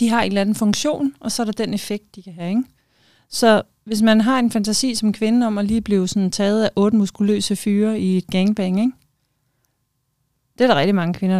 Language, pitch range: Danish, 195-230 Hz